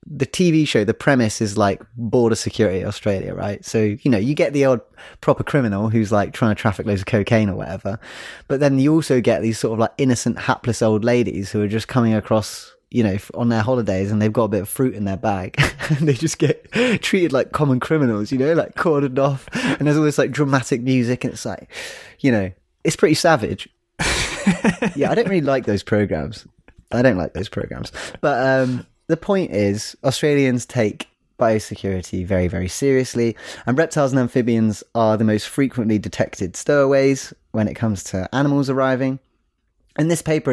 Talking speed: 195 wpm